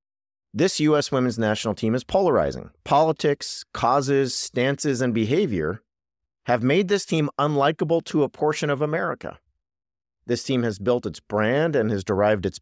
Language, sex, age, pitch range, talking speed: English, male, 40-59, 90-140 Hz, 150 wpm